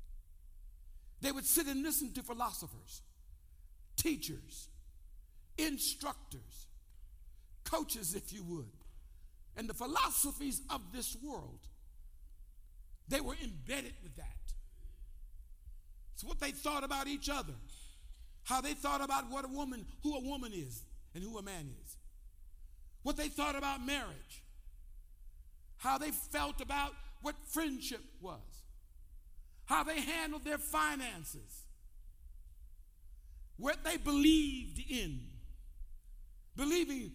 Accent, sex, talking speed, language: American, male, 110 wpm, English